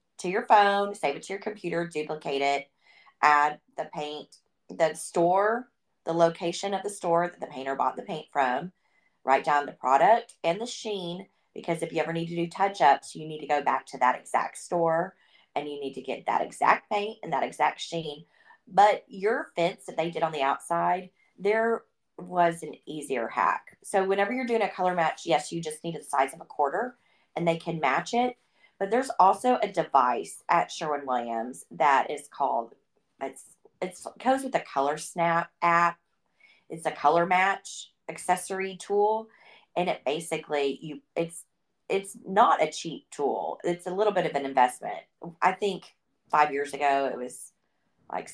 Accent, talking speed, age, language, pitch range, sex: American, 185 wpm, 30-49, English, 150-200 Hz, female